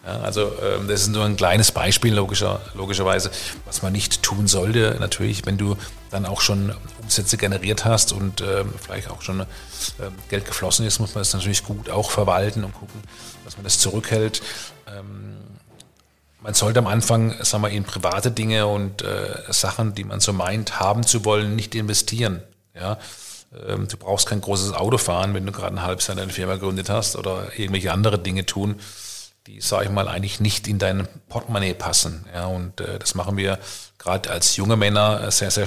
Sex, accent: male, German